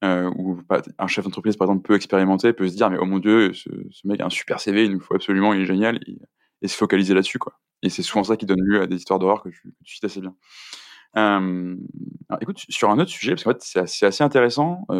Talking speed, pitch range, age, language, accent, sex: 275 wpm, 95-115 Hz, 20-39, French, French, male